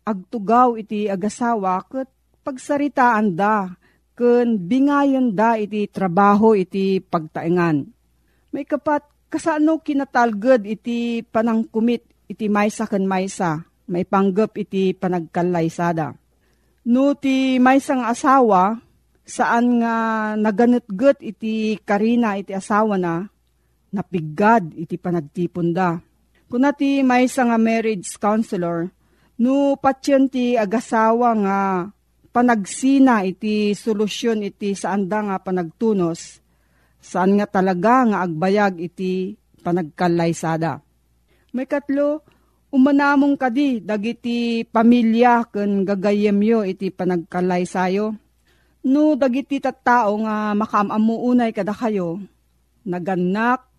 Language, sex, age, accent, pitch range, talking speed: Filipino, female, 40-59, native, 190-245 Hz, 95 wpm